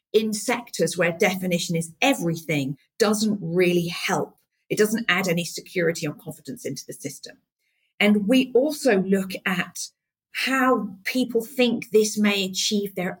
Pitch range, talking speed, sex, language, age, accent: 175-225 Hz, 140 wpm, female, English, 40-59, British